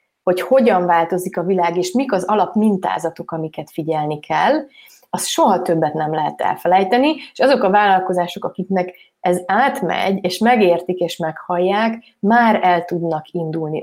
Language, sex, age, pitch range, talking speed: Hungarian, female, 30-49, 175-200 Hz, 150 wpm